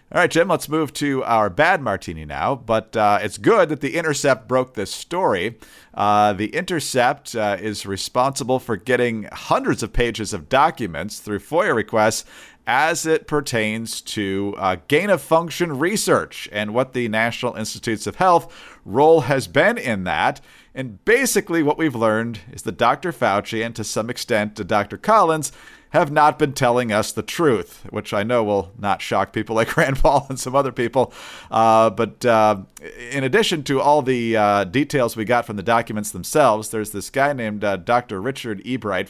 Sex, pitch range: male, 105-140 Hz